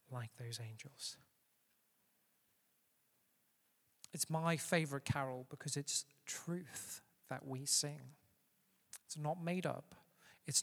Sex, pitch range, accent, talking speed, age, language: male, 130-150 Hz, British, 100 wpm, 40-59, English